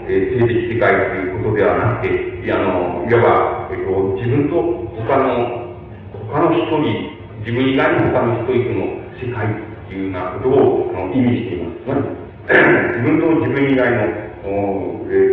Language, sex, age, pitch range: Japanese, male, 40-59, 100-130 Hz